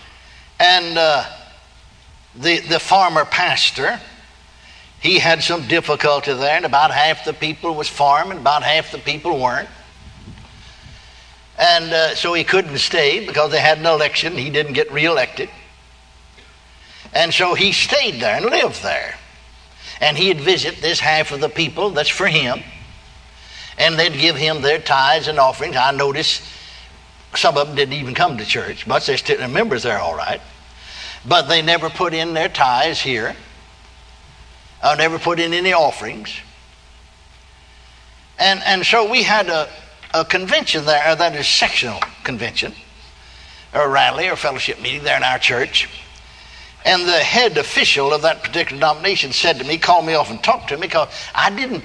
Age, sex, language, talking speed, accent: 60-79, male, English, 165 wpm, American